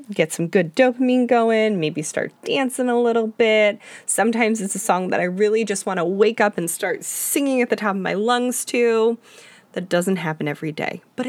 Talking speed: 205 wpm